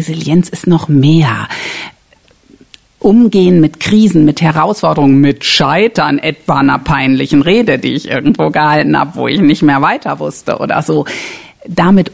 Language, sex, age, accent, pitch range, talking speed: German, female, 50-69, German, 145-180 Hz, 145 wpm